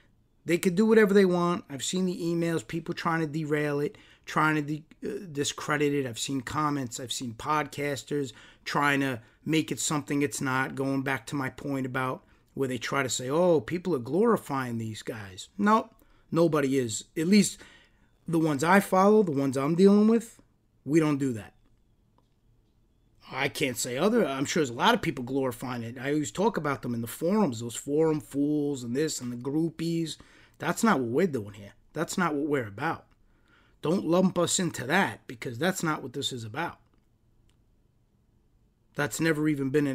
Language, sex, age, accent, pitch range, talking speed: English, male, 30-49, American, 120-165 Hz, 185 wpm